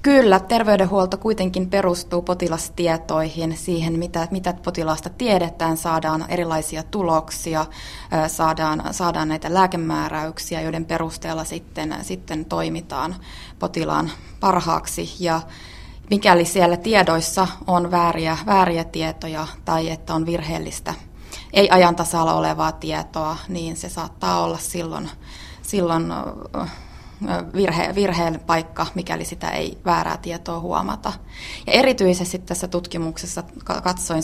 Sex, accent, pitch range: female, native, 160-185 Hz